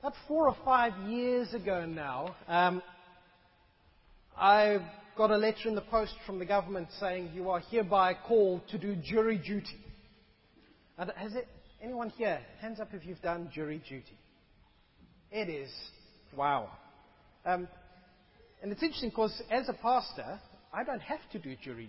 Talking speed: 155 wpm